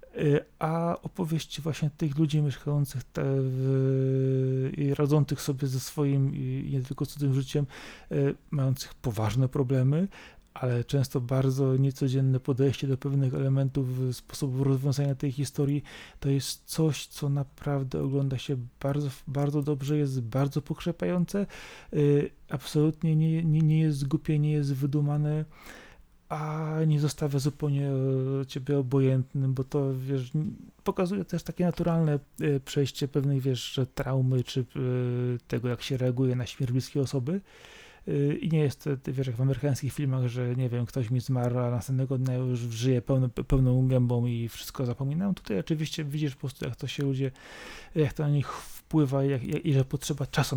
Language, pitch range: Polish, 130-150 Hz